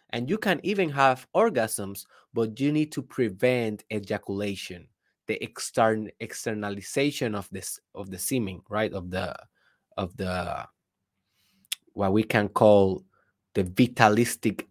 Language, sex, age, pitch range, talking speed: Spanish, male, 20-39, 100-140 Hz, 120 wpm